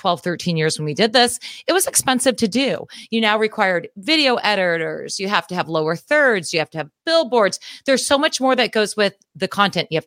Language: English